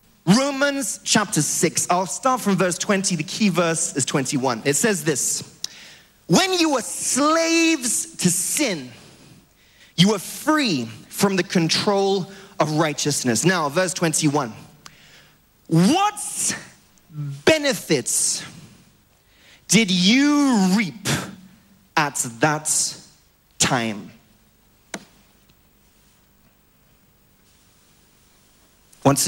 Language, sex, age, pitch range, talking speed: English, male, 30-49, 130-200 Hz, 85 wpm